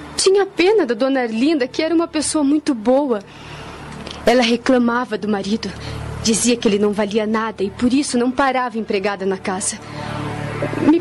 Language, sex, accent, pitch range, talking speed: Portuguese, female, Brazilian, 220-275 Hz, 170 wpm